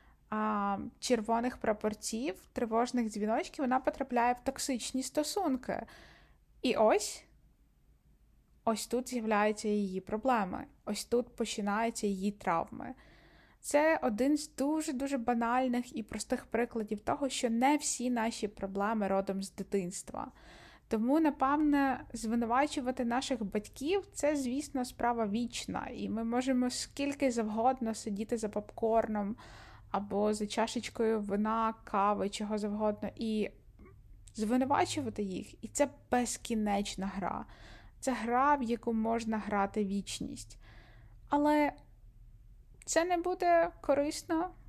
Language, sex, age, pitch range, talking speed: Ukrainian, female, 20-39, 210-265 Hz, 110 wpm